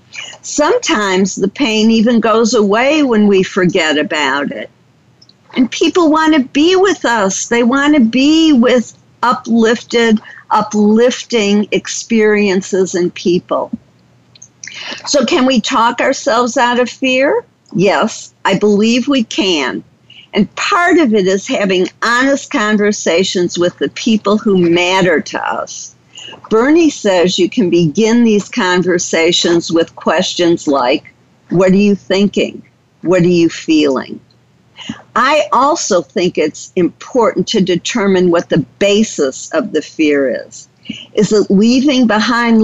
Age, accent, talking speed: 50-69, American, 130 wpm